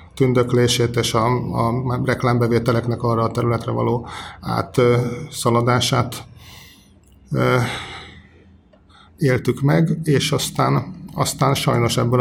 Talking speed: 80 wpm